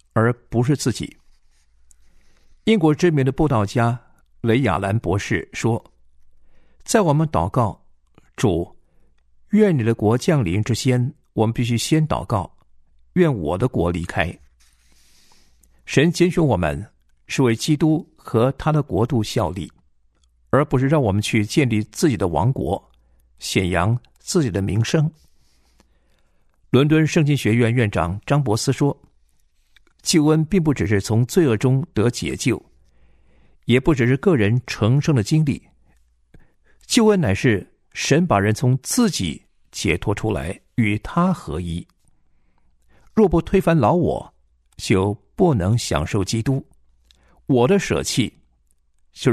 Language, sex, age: Chinese, male, 50-69